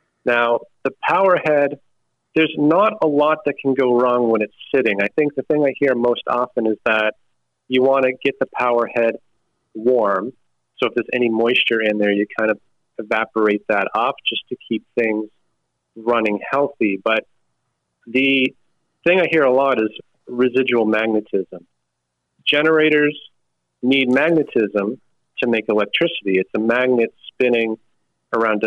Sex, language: male, English